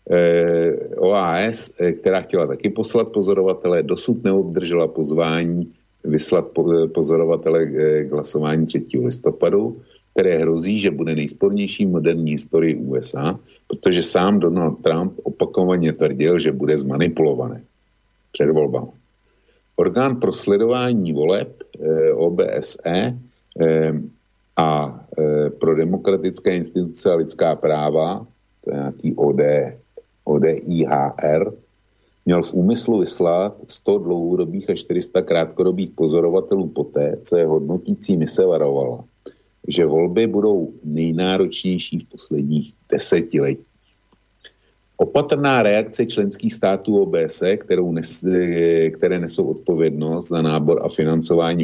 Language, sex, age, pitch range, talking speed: Slovak, male, 50-69, 80-105 Hz, 100 wpm